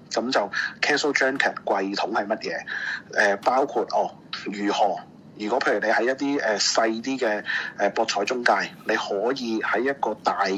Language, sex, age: Chinese, male, 30-49